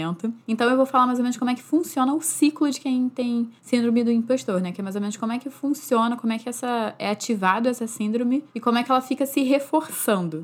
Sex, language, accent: female, Portuguese, Brazilian